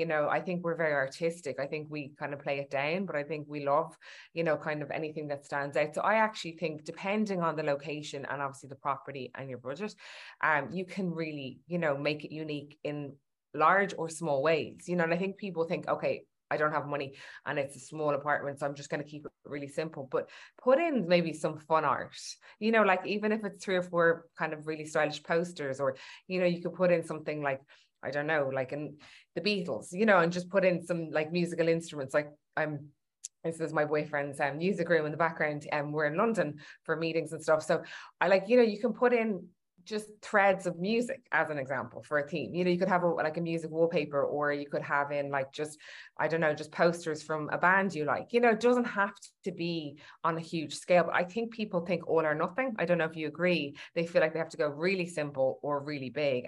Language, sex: English, female